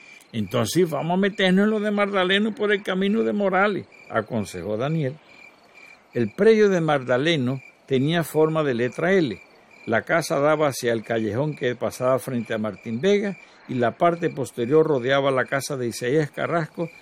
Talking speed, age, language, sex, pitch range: 165 wpm, 60-79, Spanish, male, 130-185 Hz